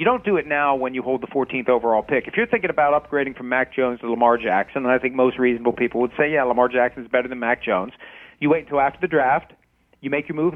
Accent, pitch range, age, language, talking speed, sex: American, 125-155 Hz, 40-59, English, 280 wpm, male